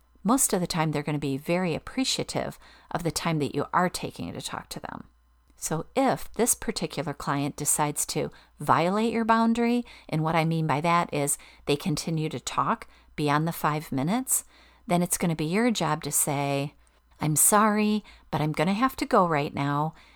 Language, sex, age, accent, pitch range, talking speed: English, female, 40-59, American, 145-185 Hz, 195 wpm